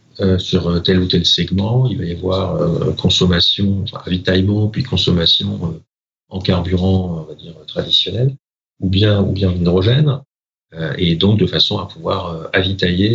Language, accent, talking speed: French, French, 170 wpm